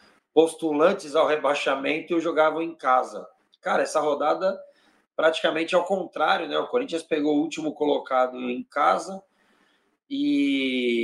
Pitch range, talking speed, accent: 135-200 Hz, 125 wpm, Brazilian